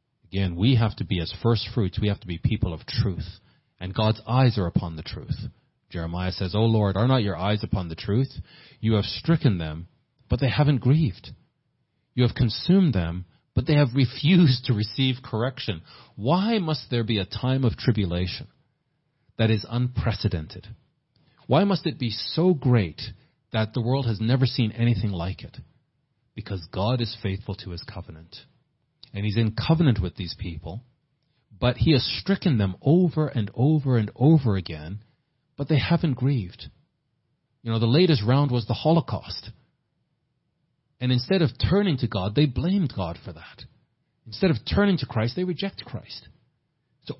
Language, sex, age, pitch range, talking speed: English, male, 40-59, 105-140 Hz, 170 wpm